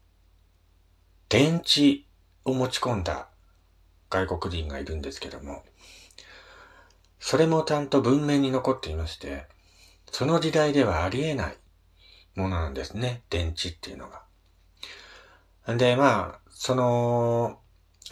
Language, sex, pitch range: Japanese, male, 85-125 Hz